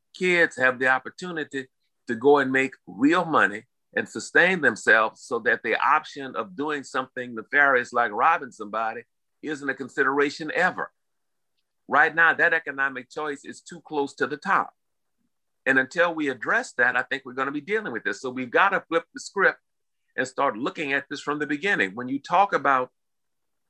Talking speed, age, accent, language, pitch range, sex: 180 wpm, 50-69, American, English, 130-160 Hz, male